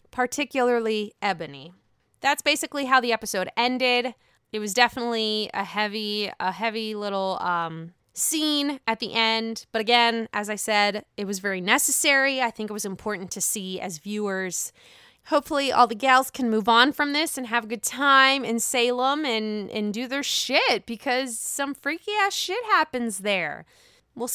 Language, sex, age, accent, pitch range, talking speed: English, female, 20-39, American, 215-285 Hz, 170 wpm